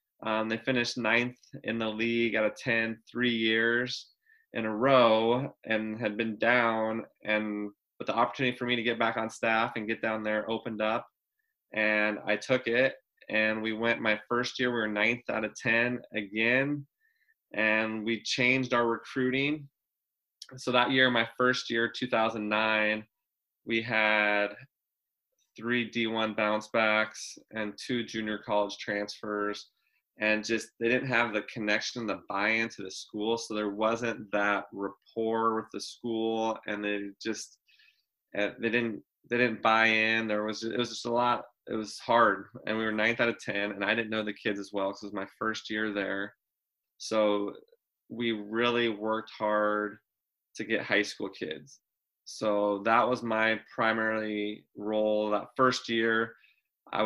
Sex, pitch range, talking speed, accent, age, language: male, 105-120 Hz, 165 wpm, American, 20-39, English